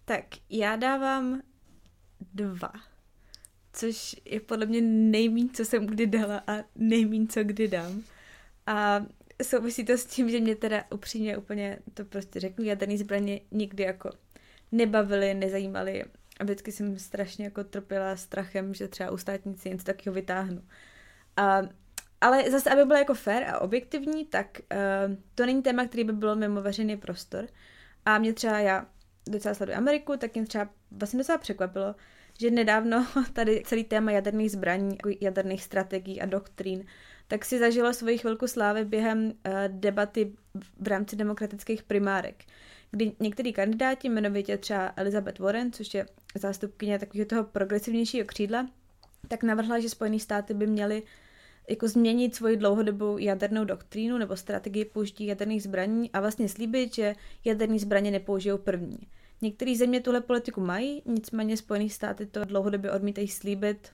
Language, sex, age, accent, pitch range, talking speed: Czech, female, 20-39, native, 195-225 Hz, 150 wpm